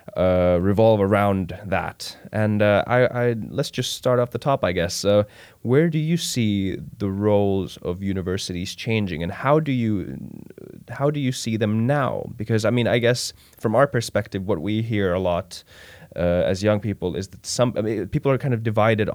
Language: Finnish